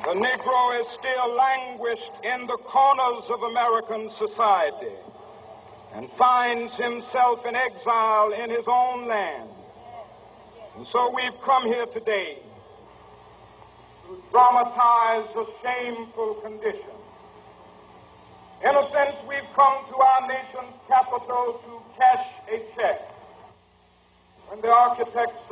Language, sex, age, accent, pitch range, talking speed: English, male, 60-79, American, 235-260 Hz, 110 wpm